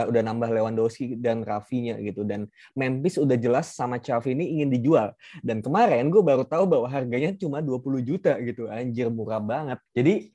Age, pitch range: 20-39, 115-155 Hz